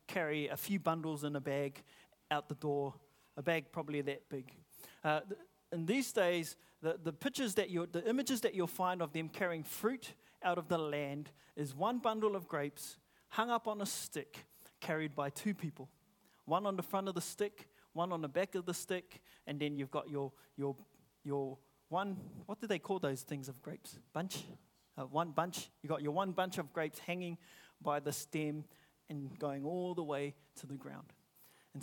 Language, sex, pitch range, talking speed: English, male, 145-195 Hz, 205 wpm